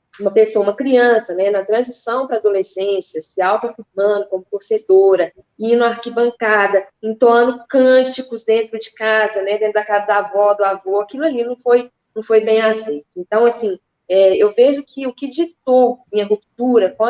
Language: Portuguese